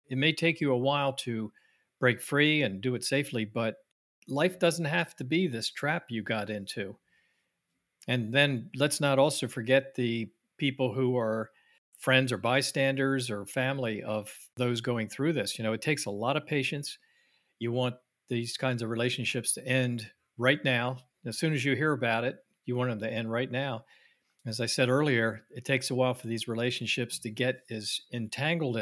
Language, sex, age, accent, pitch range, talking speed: English, male, 50-69, American, 110-135 Hz, 190 wpm